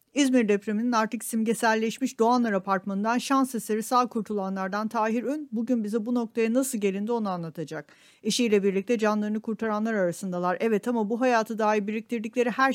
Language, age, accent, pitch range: Turkish, 50-69, native, 205-240 Hz